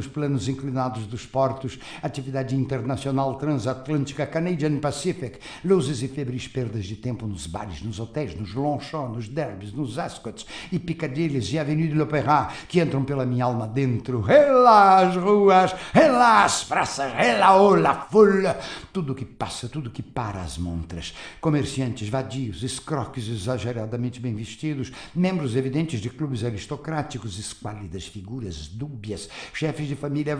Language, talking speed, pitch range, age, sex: Portuguese, 135 wpm, 125-155 Hz, 60-79, male